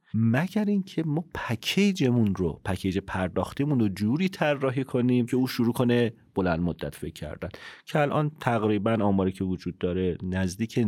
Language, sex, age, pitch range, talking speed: Persian, male, 40-59, 95-130 Hz, 150 wpm